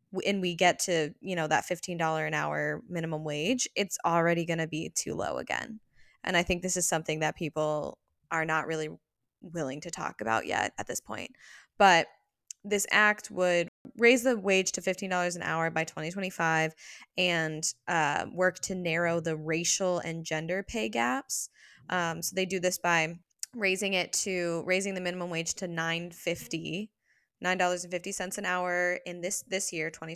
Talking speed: 190 wpm